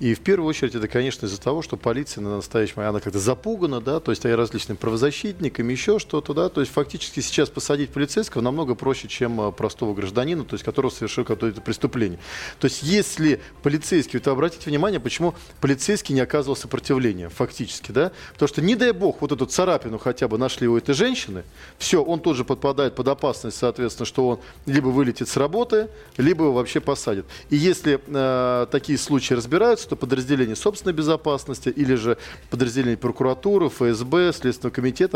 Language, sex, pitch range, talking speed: Russian, male, 120-145 Hz, 175 wpm